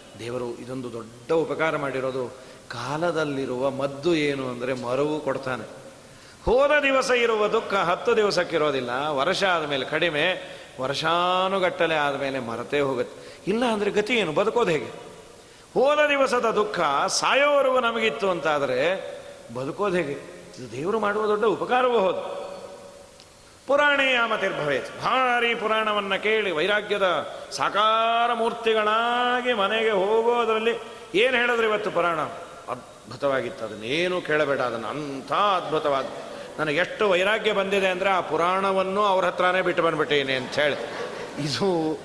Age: 40-59